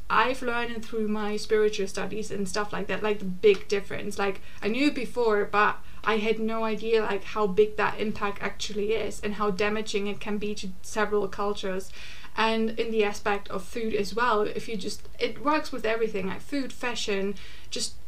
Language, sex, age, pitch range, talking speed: English, female, 20-39, 205-220 Hz, 195 wpm